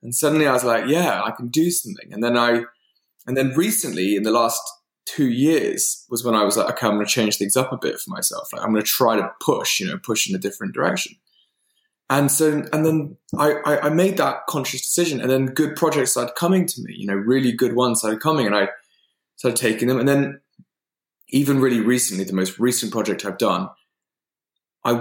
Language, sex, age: English, male, 20-39